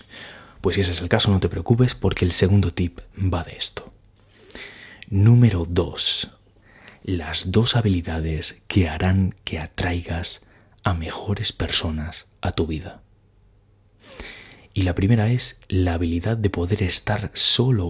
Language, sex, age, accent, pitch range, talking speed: Spanish, male, 30-49, Spanish, 90-105 Hz, 135 wpm